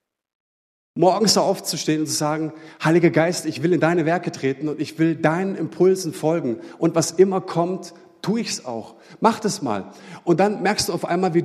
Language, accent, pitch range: German, German, 145-180 Hz